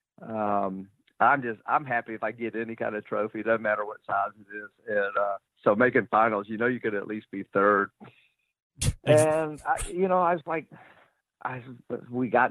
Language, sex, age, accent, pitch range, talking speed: English, male, 50-69, American, 110-130 Hz, 195 wpm